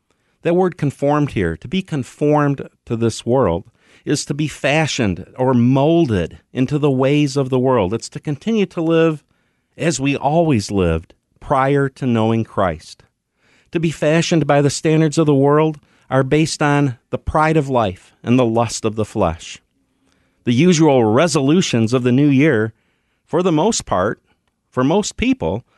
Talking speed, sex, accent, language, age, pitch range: 165 wpm, male, American, English, 50-69, 120-160 Hz